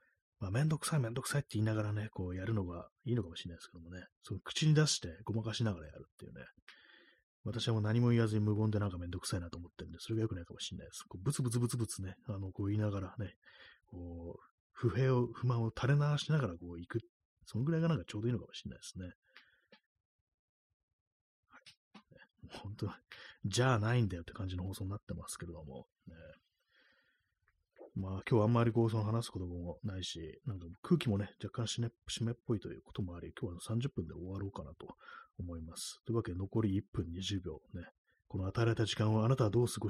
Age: 30-49